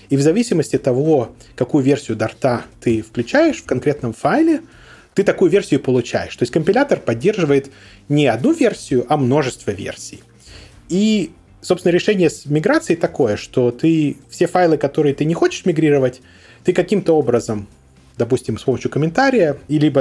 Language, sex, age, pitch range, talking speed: Russian, male, 20-39, 120-160 Hz, 150 wpm